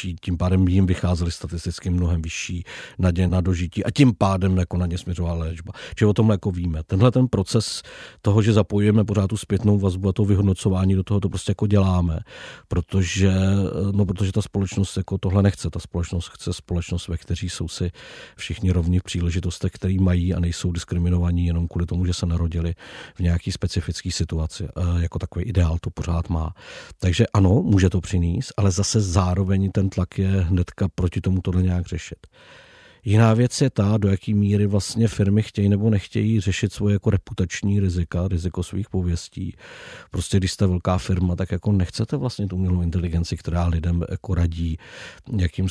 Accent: native